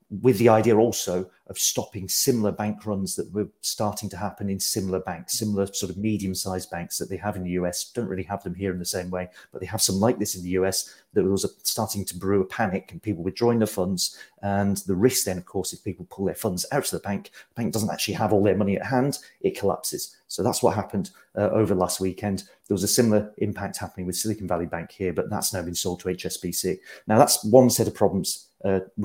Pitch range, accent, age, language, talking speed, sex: 90-105 Hz, British, 40-59, English, 245 wpm, male